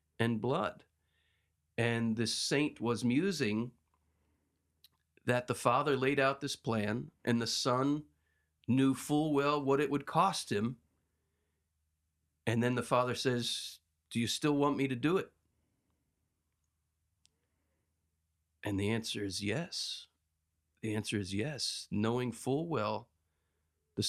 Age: 40-59